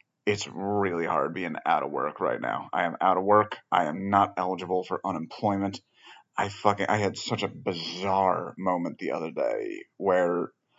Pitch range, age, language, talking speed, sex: 95-105 Hz, 30-49, English, 180 wpm, male